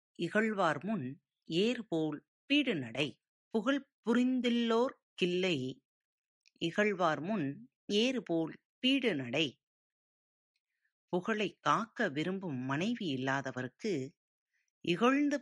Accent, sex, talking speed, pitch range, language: native, female, 60 wpm, 145-225 Hz, Tamil